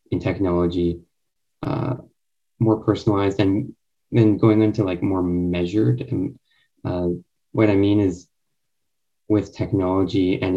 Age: 20-39